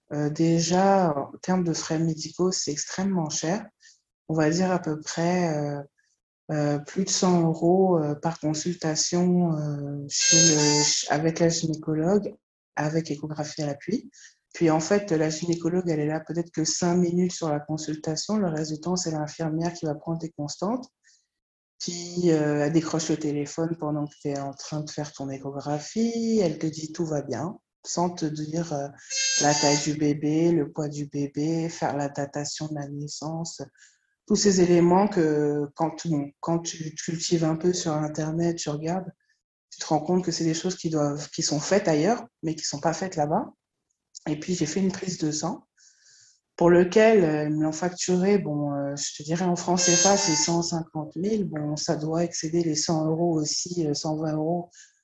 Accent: French